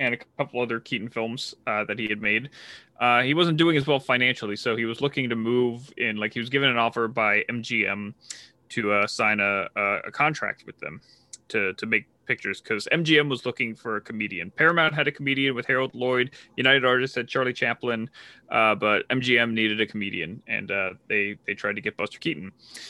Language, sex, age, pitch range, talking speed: English, male, 20-39, 105-130 Hz, 205 wpm